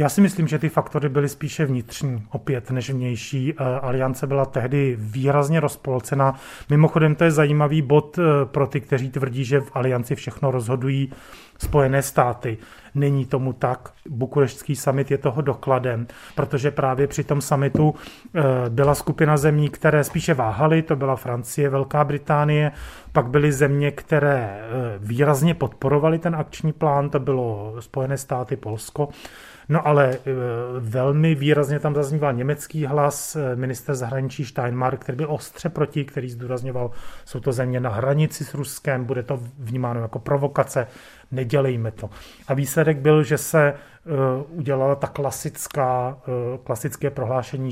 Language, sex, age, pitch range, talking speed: Czech, male, 30-49, 125-150 Hz, 140 wpm